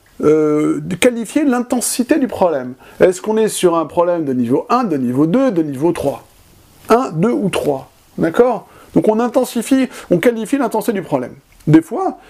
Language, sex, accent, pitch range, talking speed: French, male, French, 150-220 Hz, 175 wpm